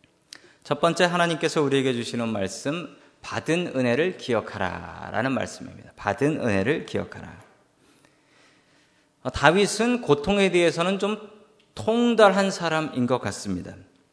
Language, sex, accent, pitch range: Korean, male, native, 130-195 Hz